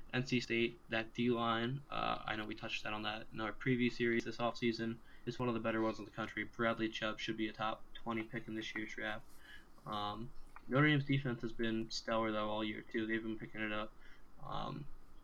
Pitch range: 110-115 Hz